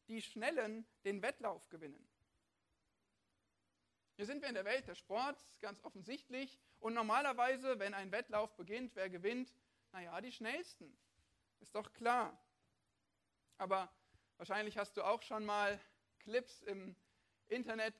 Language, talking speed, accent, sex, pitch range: German, 130 wpm, German, male, 185-265 Hz